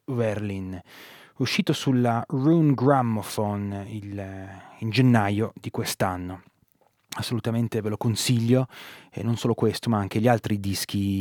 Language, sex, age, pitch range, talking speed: Italian, male, 20-39, 110-125 Hz, 120 wpm